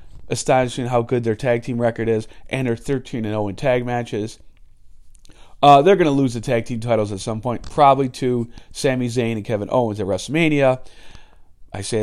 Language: English